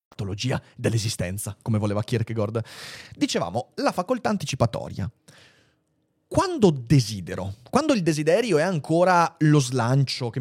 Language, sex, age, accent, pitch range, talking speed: Italian, male, 30-49, native, 120-200 Hz, 110 wpm